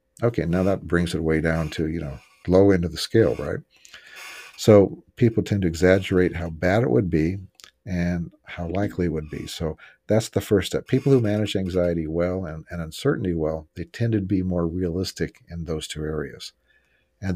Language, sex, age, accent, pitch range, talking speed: English, male, 50-69, American, 85-100 Hz, 195 wpm